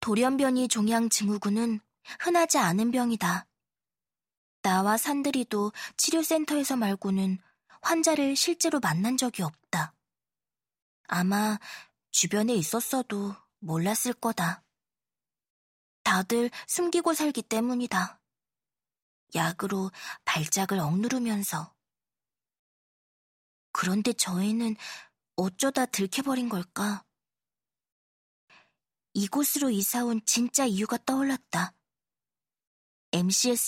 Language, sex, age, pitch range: Korean, female, 20-39, 190-250 Hz